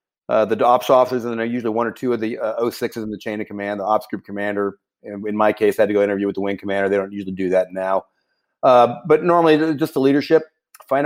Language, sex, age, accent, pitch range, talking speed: English, male, 30-49, American, 115-145 Hz, 265 wpm